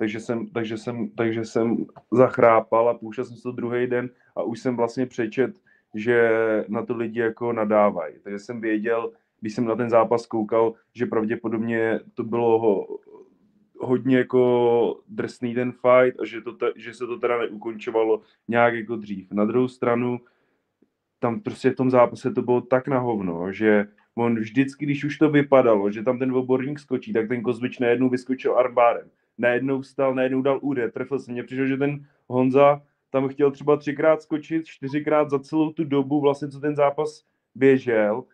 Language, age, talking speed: Czech, 20-39, 175 wpm